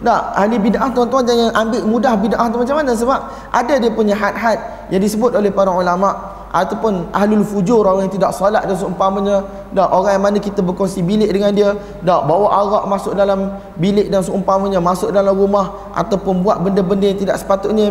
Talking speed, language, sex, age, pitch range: 190 wpm, Malay, male, 20-39, 195-250 Hz